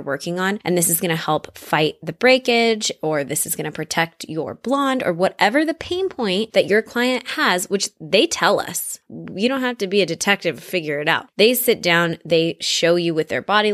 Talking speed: 225 wpm